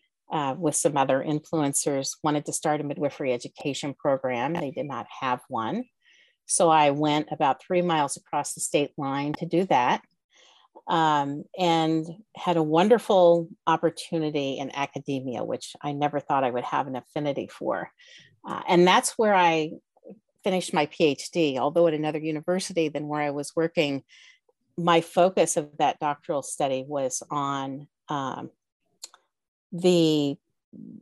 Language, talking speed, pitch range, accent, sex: English, 145 wpm, 145-175 Hz, American, female